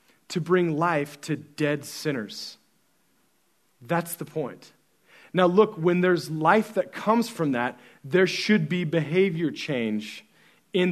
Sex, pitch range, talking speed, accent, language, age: male, 150-190 Hz, 130 wpm, American, English, 40-59